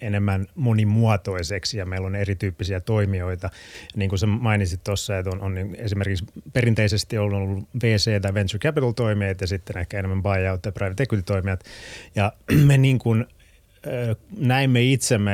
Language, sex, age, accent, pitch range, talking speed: Finnish, male, 30-49, native, 95-110 Hz, 150 wpm